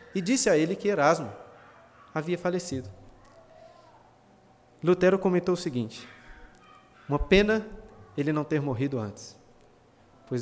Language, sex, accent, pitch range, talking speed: Portuguese, male, Brazilian, 130-200 Hz, 115 wpm